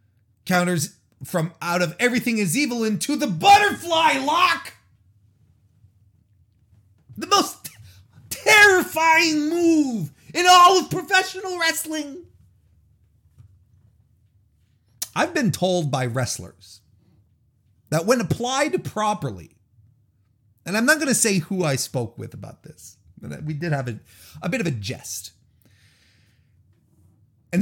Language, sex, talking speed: English, male, 115 wpm